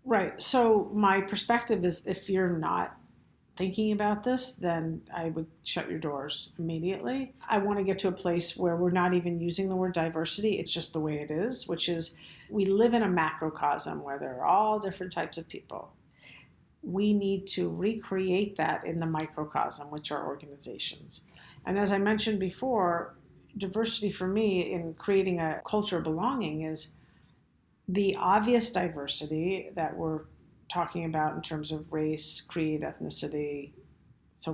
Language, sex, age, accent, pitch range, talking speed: English, female, 50-69, American, 160-195 Hz, 165 wpm